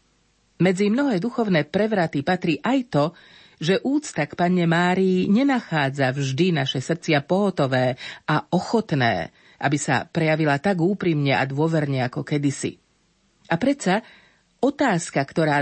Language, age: Slovak, 40-59